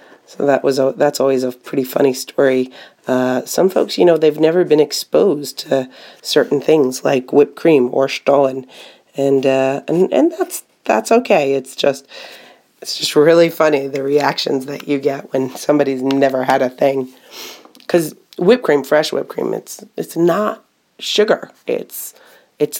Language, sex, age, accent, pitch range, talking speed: English, female, 30-49, American, 135-170 Hz, 165 wpm